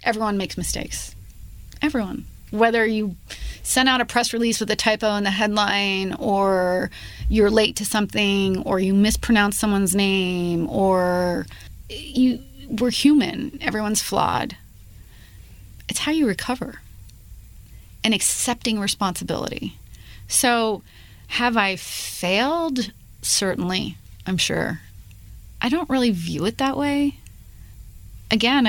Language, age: English, 30-49